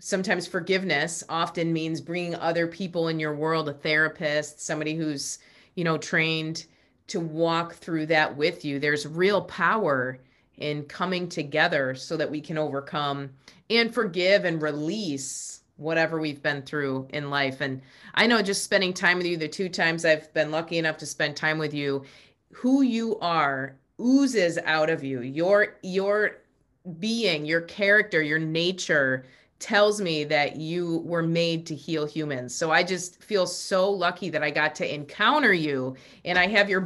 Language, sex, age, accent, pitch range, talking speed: English, female, 30-49, American, 150-185 Hz, 170 wpm